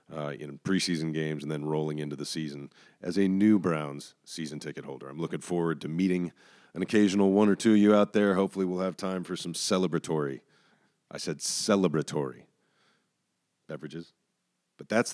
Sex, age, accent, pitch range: male, 40-59, American, 80-95 Hz